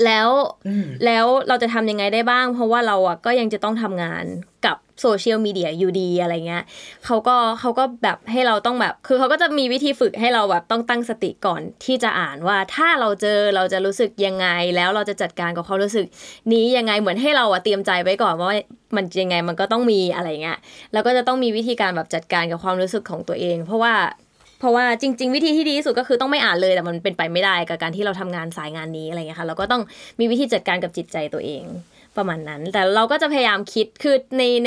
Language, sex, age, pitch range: Thai, female, 20-39, 185-240 Hz